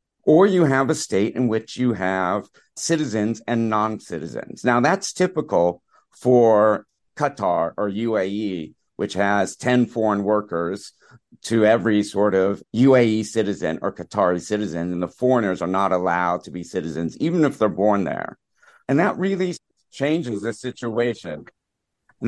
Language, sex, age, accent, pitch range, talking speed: English, male, 50-69, American, 105-150 Hz, 145 wpm